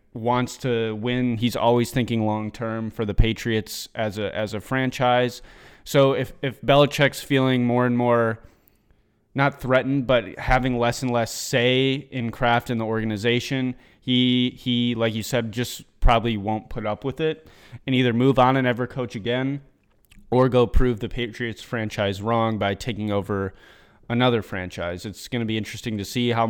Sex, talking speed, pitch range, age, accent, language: male, 175 wpm, 105-125 Hz, 20-39, American, English